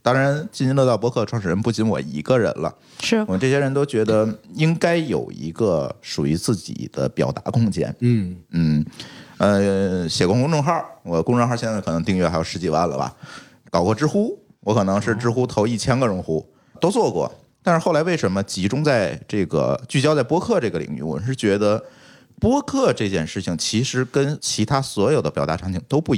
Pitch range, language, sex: 100-140 Hz, Chinese, male